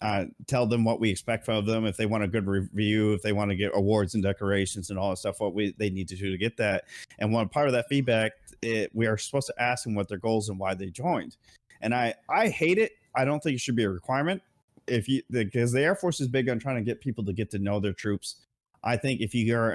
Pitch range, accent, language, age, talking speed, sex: 105-130 Hz, American, English, 30-49, 285 wpm, male